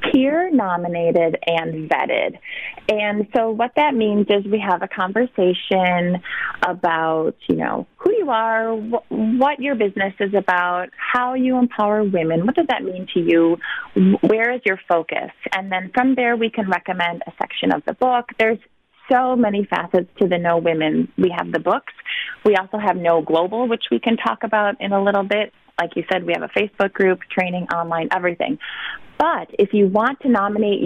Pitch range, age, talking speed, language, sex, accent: 175-225 Hz, 30-49, 185 wpm, English, female, American